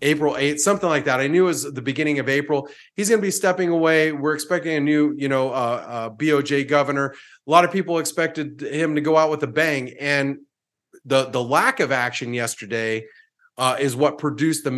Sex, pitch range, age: male, 130-160 Hz, 30-49